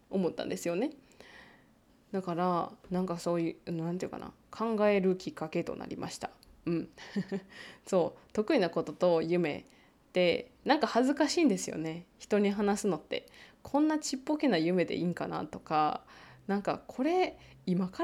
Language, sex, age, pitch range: Japanese, female, 20-39, 170-235 Hz